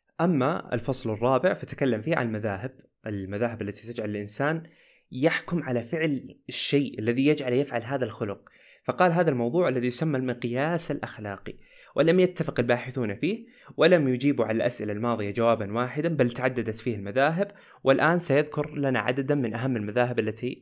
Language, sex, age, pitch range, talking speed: Arabic, male, 20-39, 115-150 Hz, 145 wpm